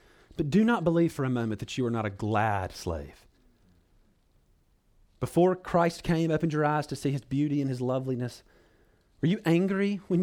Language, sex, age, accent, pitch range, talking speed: English, male, 40-59, American, 110-170 Hz, 180 wpm